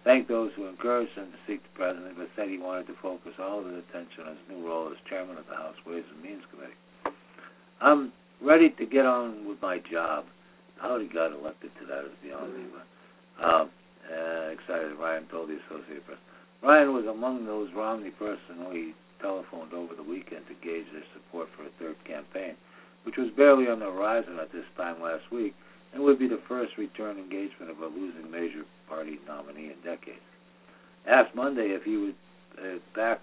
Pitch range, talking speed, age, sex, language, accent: 80-125 Hz, 195 wpm, 60-79, male, English, American